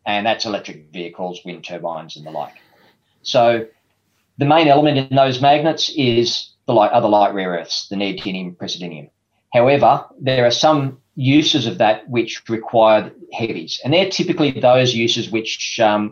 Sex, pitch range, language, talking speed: male, 100-125 Hz, English, 160 wpm